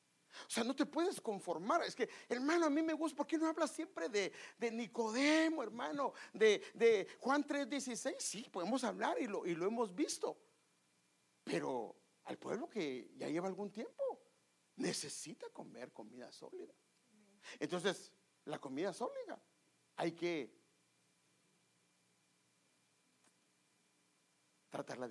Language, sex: English, male